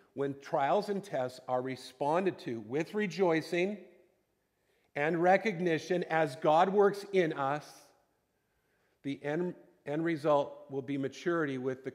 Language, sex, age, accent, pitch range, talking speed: English, male, 50-69, American, 125-165 Hz, 125 wpm